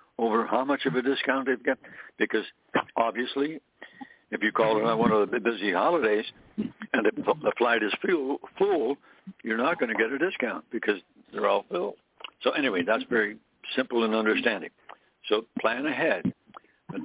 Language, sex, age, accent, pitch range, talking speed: English, male, 60-79, American, 120-165 Hz, 175 wpm